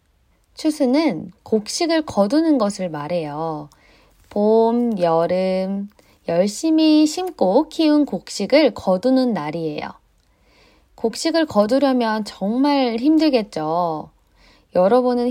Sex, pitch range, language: female, 170-270 Hz, Korean